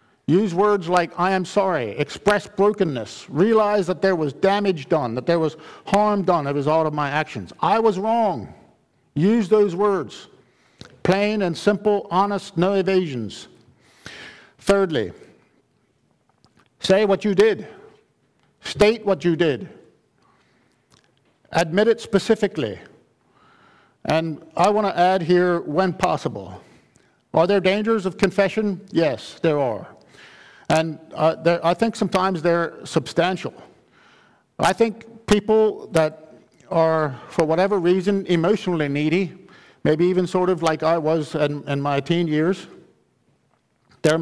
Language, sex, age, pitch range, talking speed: English, male, 50-69, 160-200 Hz, 130 wpm